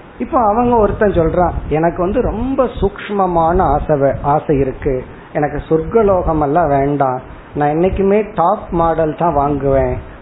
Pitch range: 150-195 Hz